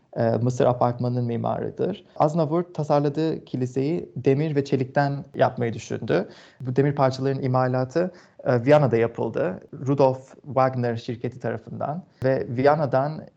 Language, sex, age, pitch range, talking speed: Turkish, male, 30-49, 125-145 Hz, 105 wpm